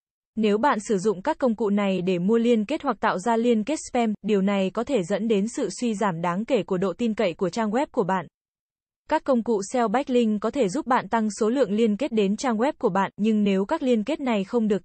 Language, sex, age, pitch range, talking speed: Vietnamese, female, 10-29, 195-240 Hz, 265 wpm